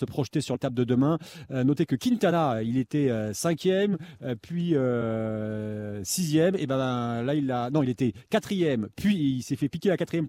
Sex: male